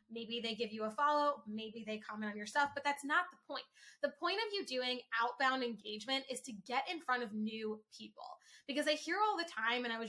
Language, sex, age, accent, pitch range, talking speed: English, female, 10-29, American, 235-290 Hz, 245 wpm